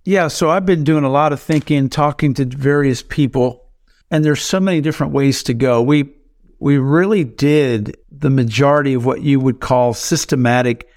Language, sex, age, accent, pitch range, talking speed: English, male, 50-69, American, 115-140 Hz, 180 wpm